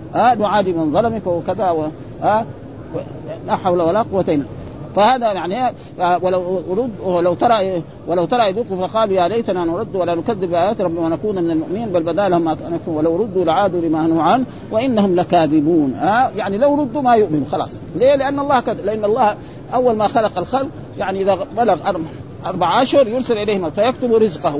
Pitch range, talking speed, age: 165-225 Hz, 160 wpm, 50-69